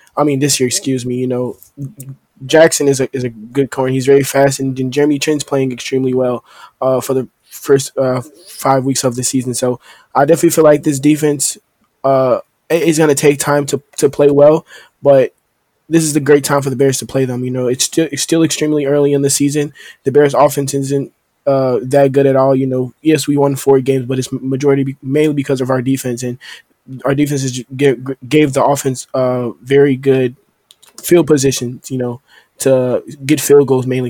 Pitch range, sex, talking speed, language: 130-140 Hz, male, 205 wpm, English